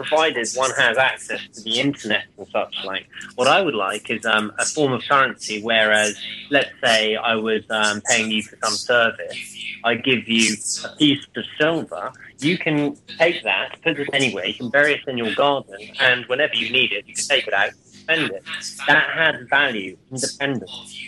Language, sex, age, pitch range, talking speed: Slovak, male, 30-49, 110-140 Hz, 195 wpm